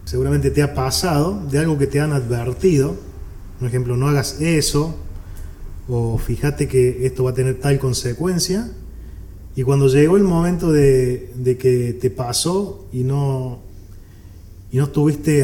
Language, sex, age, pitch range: Spanish, male, 30-49, 105-140 Hz